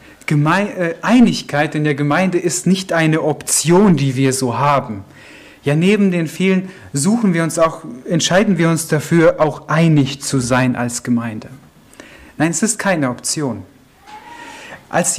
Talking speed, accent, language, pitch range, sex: 140 wpm, German, German, 135-190 Hz, male